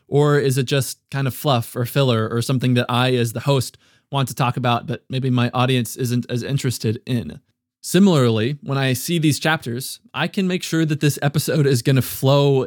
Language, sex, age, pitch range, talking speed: English, male, 20-39, 120-140 Hz, 210 wpm